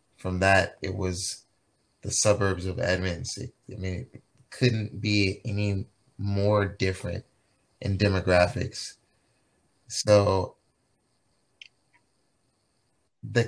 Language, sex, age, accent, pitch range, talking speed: English, male, 30-49, American, 95-115 Hz, 90 wpm